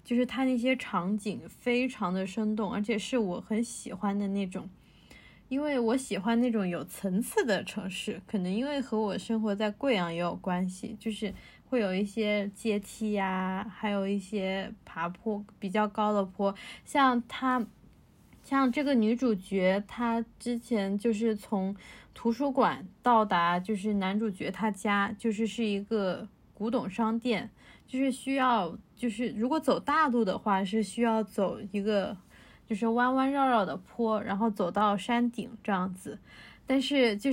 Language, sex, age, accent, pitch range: Chinese, female, 20-39, native, 200-240 Hz